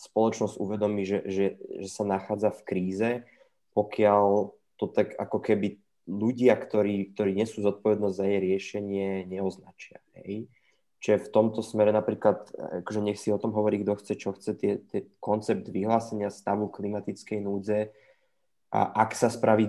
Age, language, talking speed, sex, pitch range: 20-39, Slovak, 150 wpm, male, 100-110 Hz